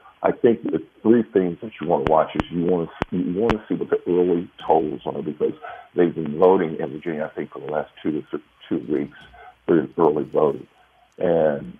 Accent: American